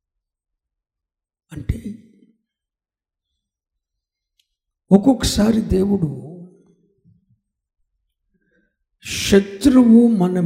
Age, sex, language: 60-79, male, Telugu